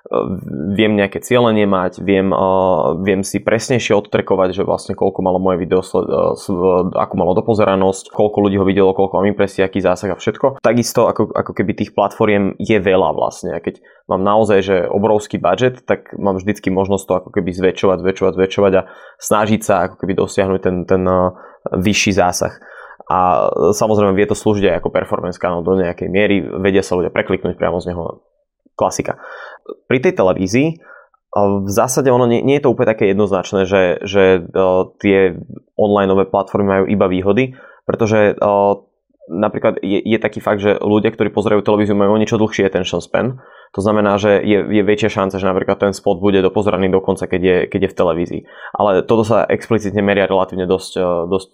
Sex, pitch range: male, 95-105 Hz